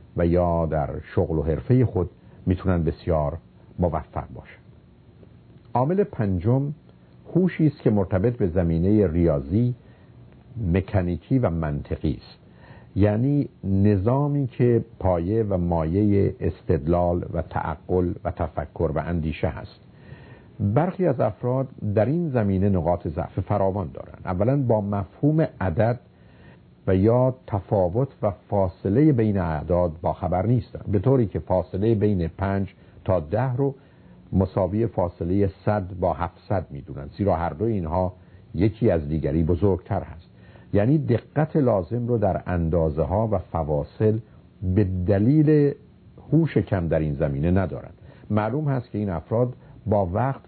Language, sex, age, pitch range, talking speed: Persian, male, 50-69, 85-115 Hz, 125 wpm